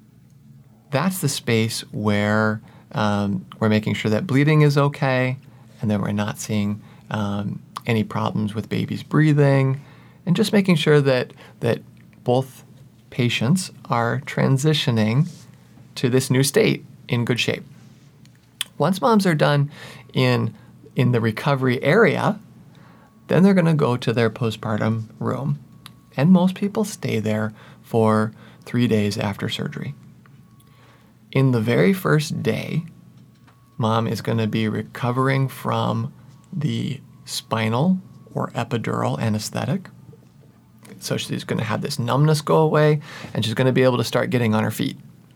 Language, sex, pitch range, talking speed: English, male, 110-145 Hz, 140 wpm